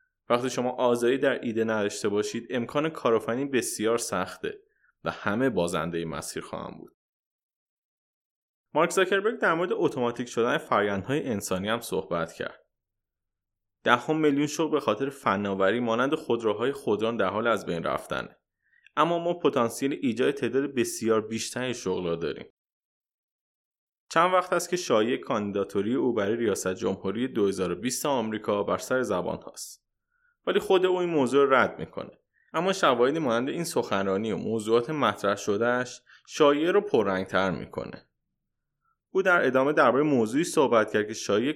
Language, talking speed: Persian, 140 wpm